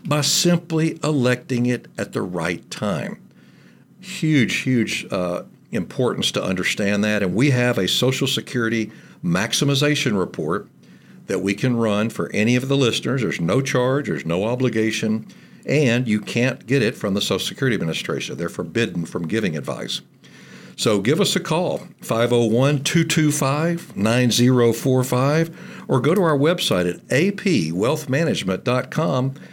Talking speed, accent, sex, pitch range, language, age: 135 wpm, American, male, 105-135 Hz, English, 60-79